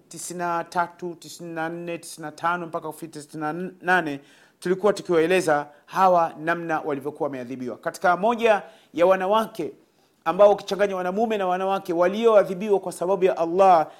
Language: Swahili